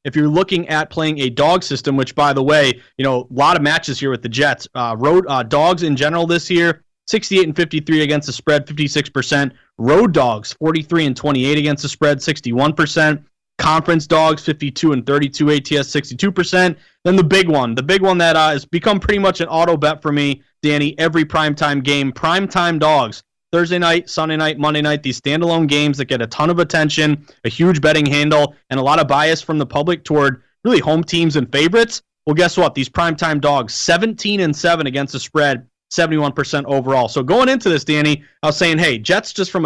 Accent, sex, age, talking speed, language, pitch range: American, male, 20-39, 205 wpm, English, 140-170 Hz